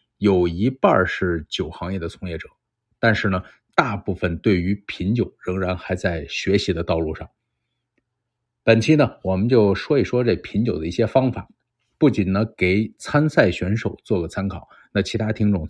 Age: 50-69